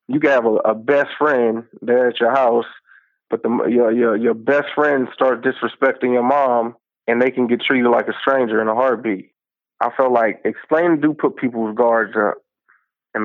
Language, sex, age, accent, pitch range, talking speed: English, male, 30-49, American, 115-135 Hz, 195 wpm